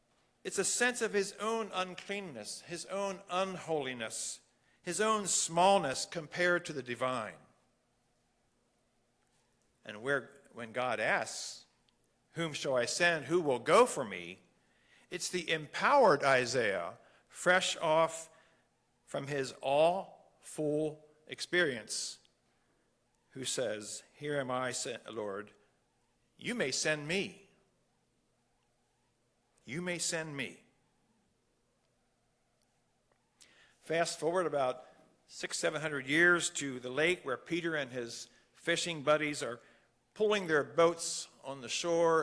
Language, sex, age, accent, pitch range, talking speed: English, male, 50-69, American, 140-180 Hz, 110 wpm